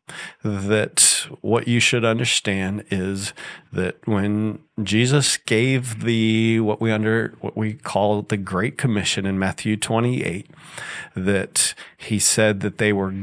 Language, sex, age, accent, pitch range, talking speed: English, male, 40-59, American, 100-115 Hz, 130 wpm